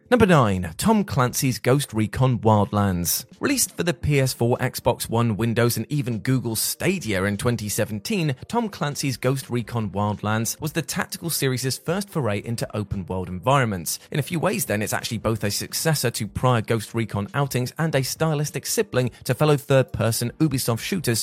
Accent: British